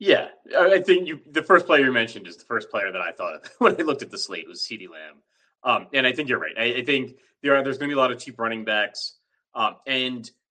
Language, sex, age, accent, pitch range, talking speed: English, male, 30-49, American, 105-135 Hz, 280 wpm